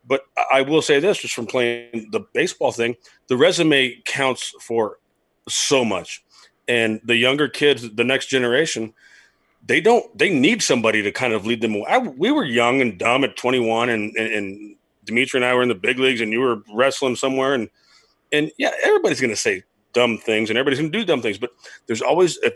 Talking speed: 205 wpm